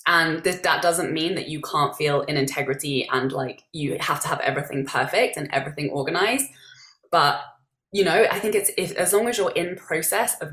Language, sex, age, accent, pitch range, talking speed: English, female, 20-39, British, 145-180 Hz, 195 wpm